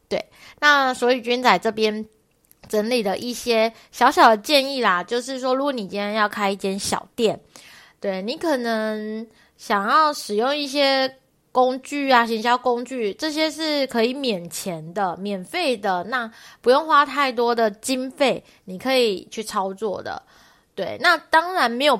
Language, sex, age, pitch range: Chinese, female, 20-39, 210-270 Hz